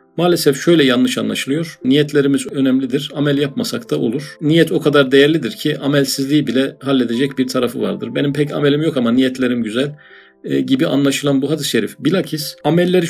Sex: male